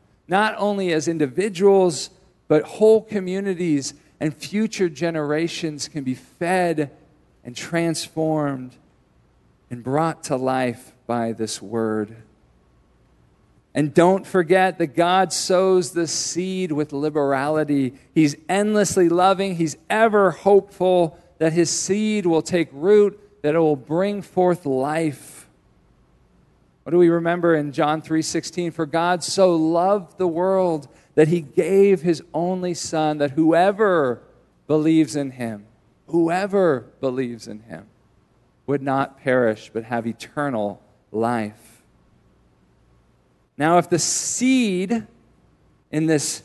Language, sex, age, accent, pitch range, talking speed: English, male, 50-69, American, 140-185 Hz, 120 wpm